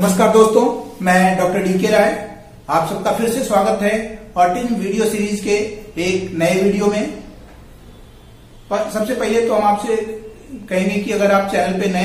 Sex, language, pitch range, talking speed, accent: male, Hindi, 180-215 Hz, 160 wpm, native